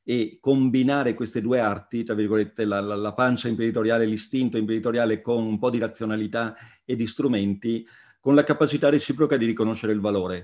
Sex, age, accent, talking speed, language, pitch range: male, 40-59, native, 170 wpm, Italian, 110-125 Hz